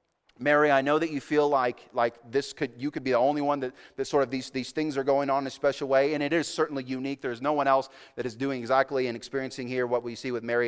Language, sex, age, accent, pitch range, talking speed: English, male, 30-49, American, 115-150 Hz, 290 wpm